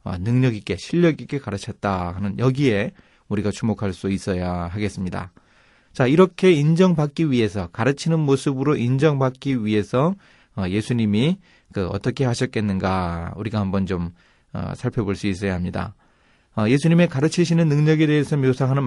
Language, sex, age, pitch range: Korean, male, 30-49, 105-145 Hz